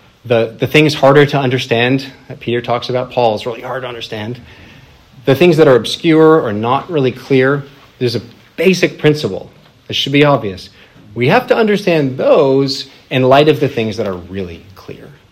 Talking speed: 185 wpm